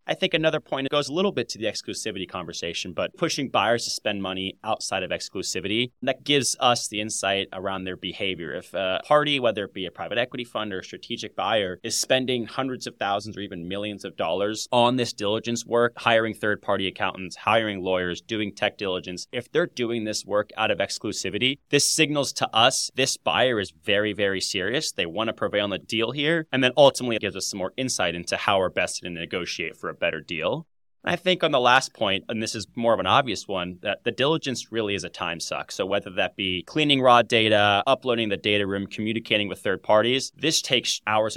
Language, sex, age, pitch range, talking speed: English, male, 30-49, 95-125 Hz, 220 wpm